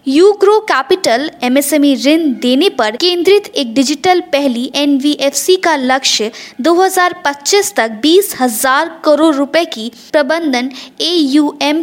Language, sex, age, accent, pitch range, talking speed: Hindi, female, 20-39, native, 250-320 Hz, 115 wpm